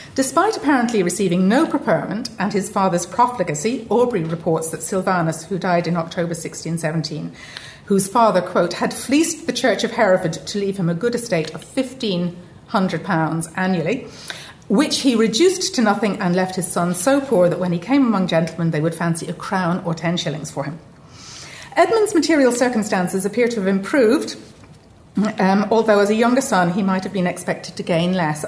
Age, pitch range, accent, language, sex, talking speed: 40-59, 170-225 Hz, British, English, female, 180 wpm